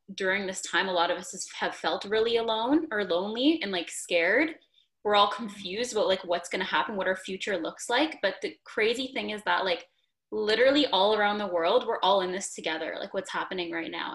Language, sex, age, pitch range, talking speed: English, female, 10-29, 185-240 Hz, 220 wpm